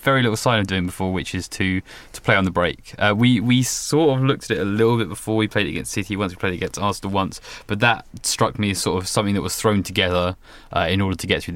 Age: 20-39